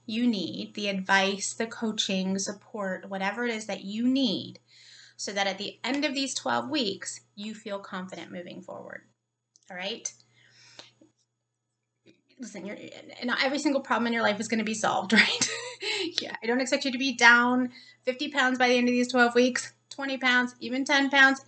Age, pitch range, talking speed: 30-49, 190-250 Hz, 180 wpm